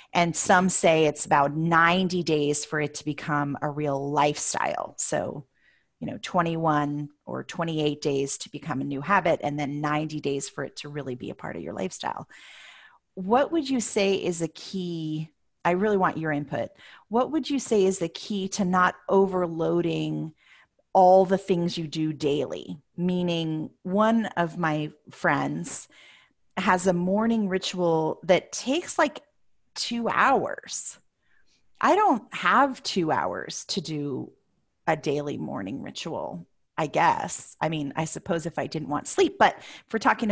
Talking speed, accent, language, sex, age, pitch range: 160 wpm, American, English, female, 30-49, 150-195 Hz